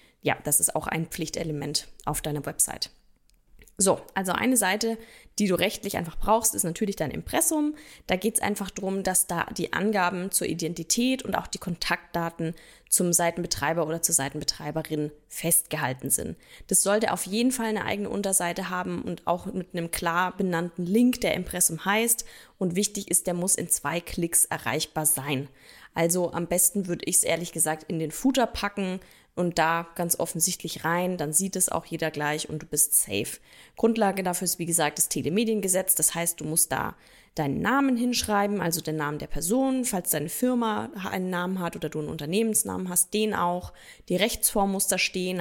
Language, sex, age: German, female, 20-39